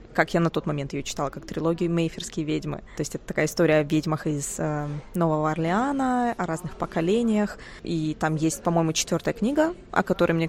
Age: 20-39